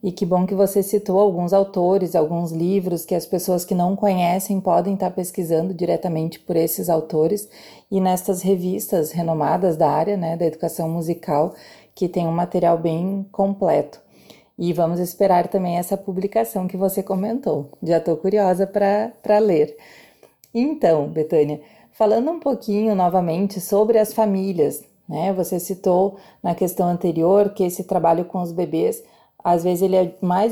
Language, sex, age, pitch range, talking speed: Portuguese, female, 30-49, 175-210 Hz, 155 wpm